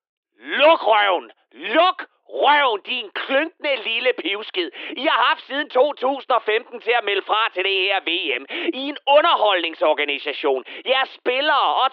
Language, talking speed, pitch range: Danish, 140 wpm, 215-295 Hz